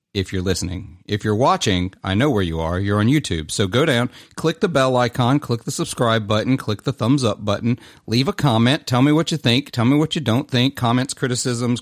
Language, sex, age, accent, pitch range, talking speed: English, male, 40-59, American, 110-145 Hz, 235 wpm